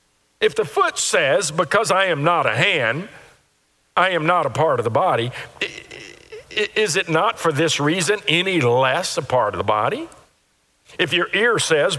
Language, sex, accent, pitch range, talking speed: English, male, American, 135-215 Hz, 175 wpm